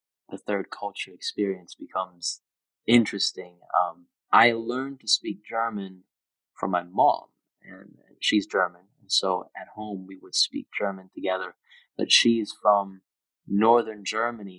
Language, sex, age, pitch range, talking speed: English, male, 20-39, 95-115 Hz, 130 wpm